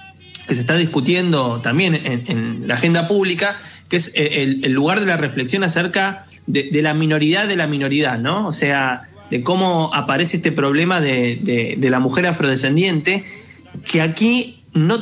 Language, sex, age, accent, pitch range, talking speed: Spanish, male, 20-39, Argentinian, 135-175 Hz, 170 wpm